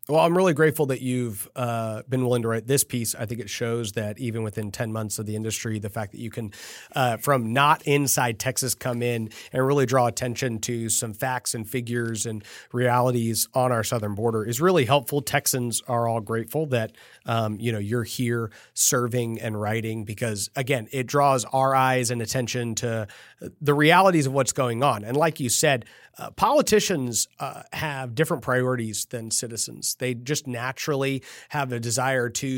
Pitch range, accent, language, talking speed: 115-145 Hz, American, English, 190 wpm